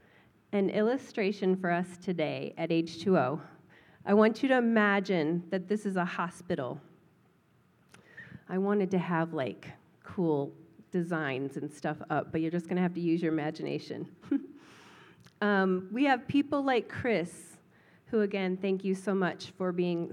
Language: English